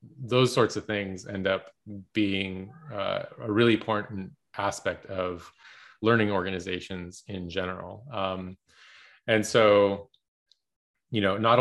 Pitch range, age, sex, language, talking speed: 95-110 Hz, 20-39, male, English, 120 wpm